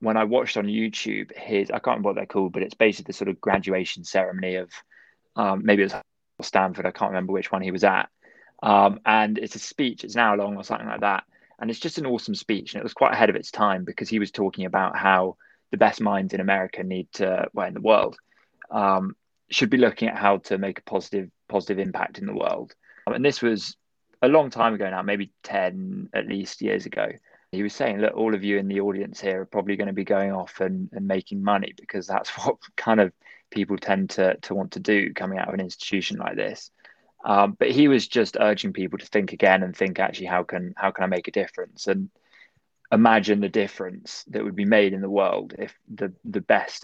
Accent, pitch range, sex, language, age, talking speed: British, 95-105 Hz, male, English, 20-39, 235 wpm